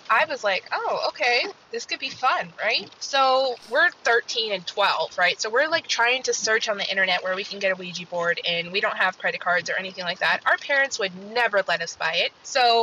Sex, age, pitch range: female, 20-39, 195-255 Hz